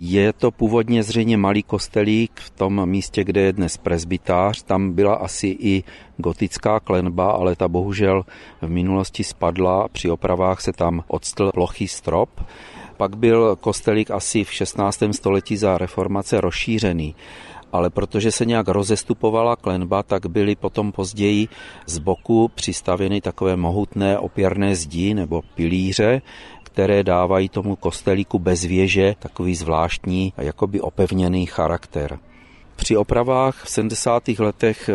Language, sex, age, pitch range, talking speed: Czech, male, 40-59, 90-105 Hz, 135 wpm